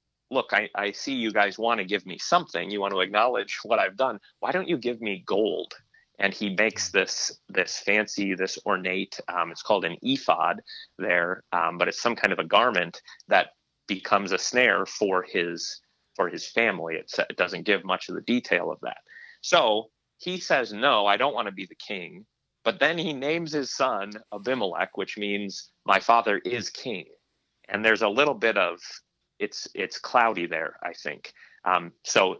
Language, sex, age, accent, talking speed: English, male, 30-49, American, 190 wpm